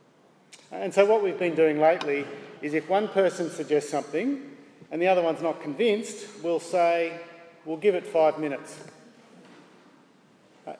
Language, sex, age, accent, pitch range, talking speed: English, male, 40-59, Australian, 155-205 Hz, 150 wpm